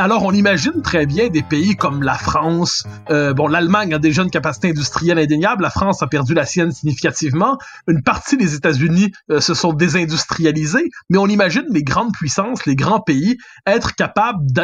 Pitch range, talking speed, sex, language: 160-215 Hz, 180 wpm, male, French